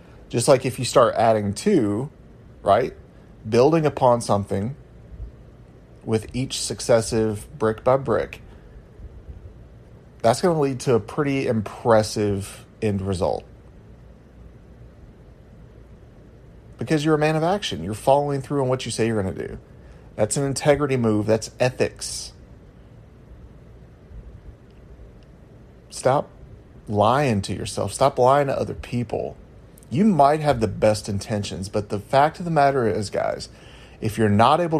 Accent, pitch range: American, 105-140 Hz